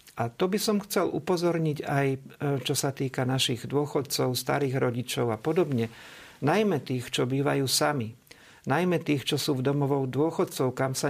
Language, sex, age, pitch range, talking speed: Slovak, male, 50-69, 130-160 Hz, 160 wpm